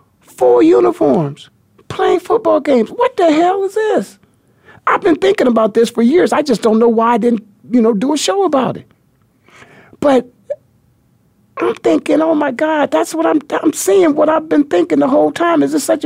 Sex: male